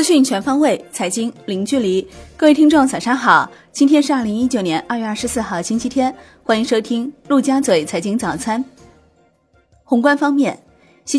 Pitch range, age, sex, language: 190-255 Hz, 20-39, female, Chinese